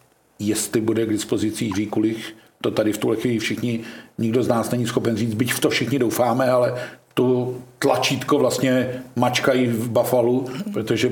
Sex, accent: male, native